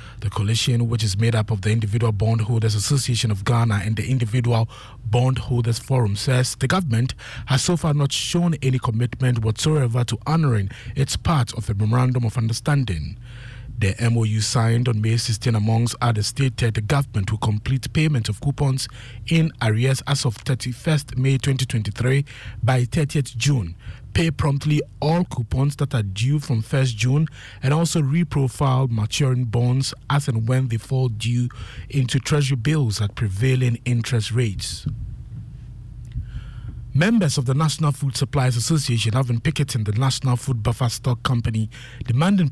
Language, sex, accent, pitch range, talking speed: English, male, Nigerian, 115-135 Hz, 155 wpm